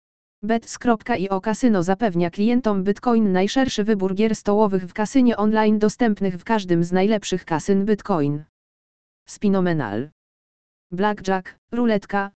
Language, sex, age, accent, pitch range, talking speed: Polish, female, 20-39, native, 185-225 Hz, 105 wpm